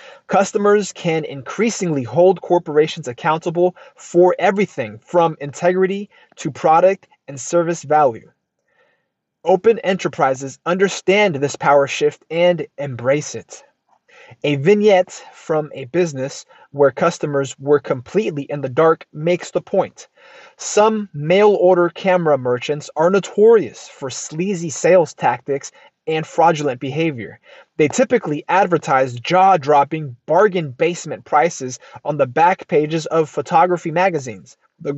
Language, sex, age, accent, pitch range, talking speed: English, male, 30-49, American, 145-185 Hz, 115 wpm